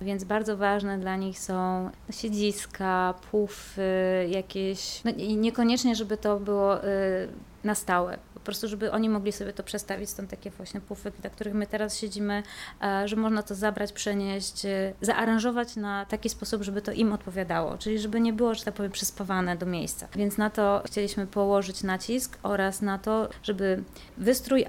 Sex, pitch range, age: female, 195-220 Hz, 20-39